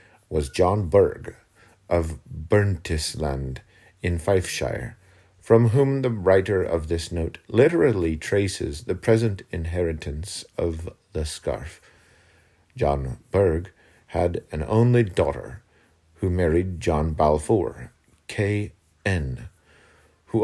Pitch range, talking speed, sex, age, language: 85-105 Hz, 105 wpm, male, 50-69, English